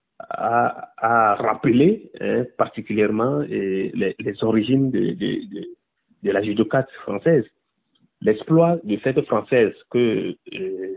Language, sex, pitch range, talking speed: French, male, 105-155 Hz, 115 wpm